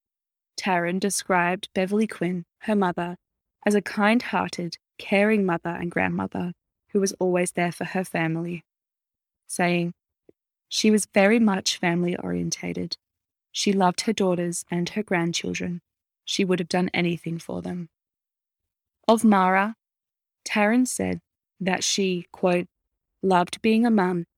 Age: 20-39